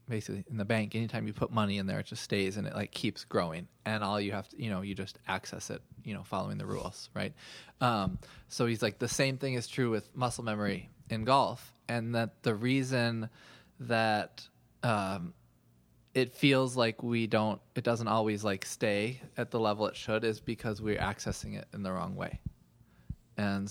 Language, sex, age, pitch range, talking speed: English, male, 20-39, 105-125 Hz, 200 wpm